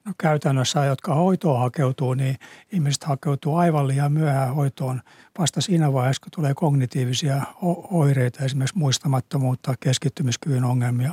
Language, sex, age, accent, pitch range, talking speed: Finnish, male, 60-79, native, 135-160 Hz, 125 wpm